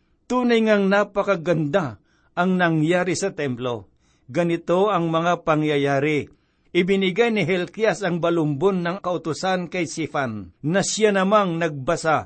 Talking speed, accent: 115 wpm, native